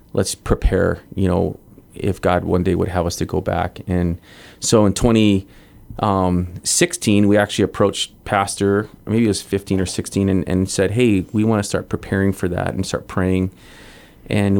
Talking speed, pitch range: 175 wpm, 95-105 Hz